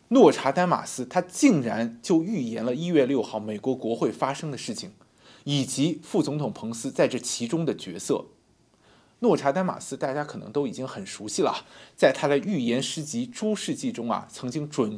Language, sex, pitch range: Chinese, male, 125-200 Hz